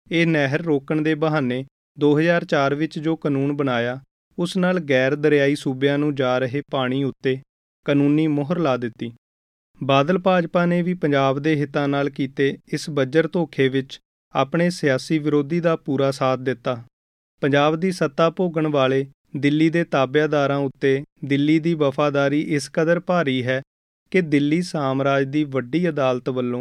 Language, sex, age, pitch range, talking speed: Punjabi, male, 30-49, 135-155 Hz, 130 wpm